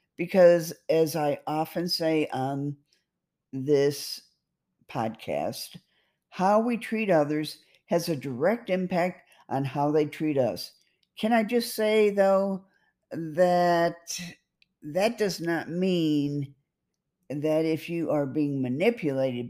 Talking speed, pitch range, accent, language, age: 115 wpm, 140-175 Hz, American, English, 50-69